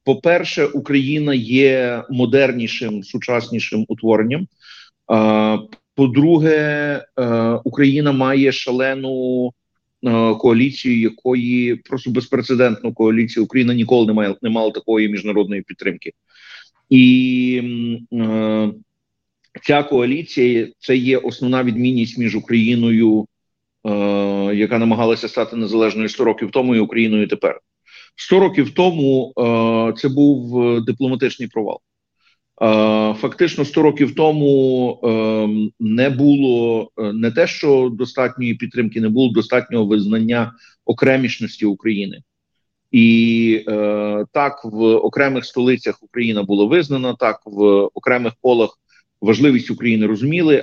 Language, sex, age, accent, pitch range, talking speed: Ukrainian, male, 40-59, native, 110-135 Hz, 110 wpm